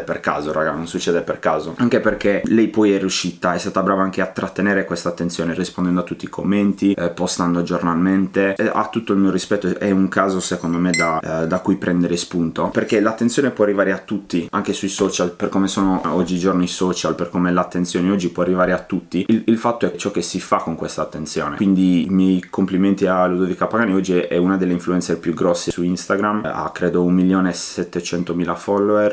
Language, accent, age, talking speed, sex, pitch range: Italian, native, 20-39, 210 wpm, male, 85-100 Hz